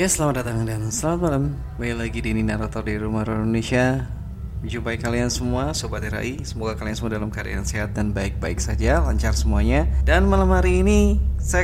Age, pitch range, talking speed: 20-39, 75-125 Hz, 180 wpm